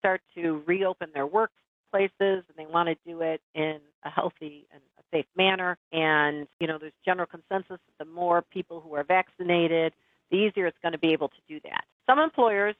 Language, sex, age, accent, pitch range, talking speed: English, female, 50-69, American, 155-185 Hz, 200 wpm